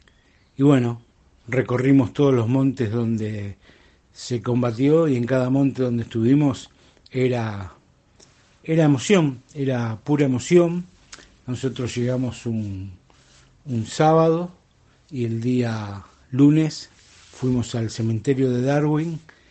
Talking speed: 110 wpm